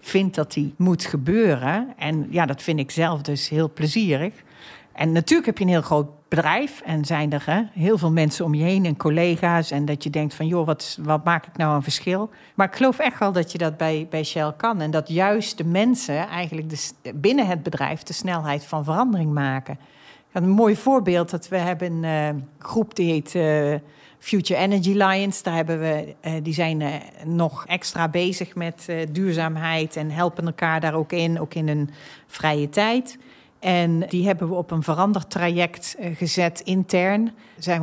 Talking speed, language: 195 wpm, Dutch